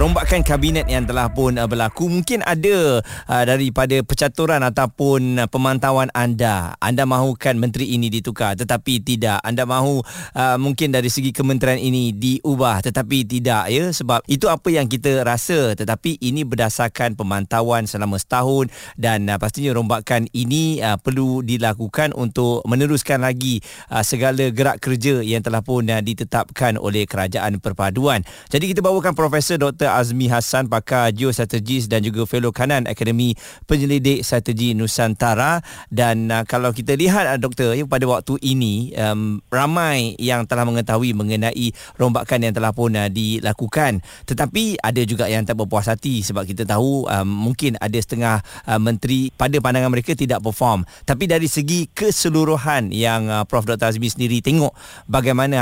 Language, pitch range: Malay, 115-135 Hz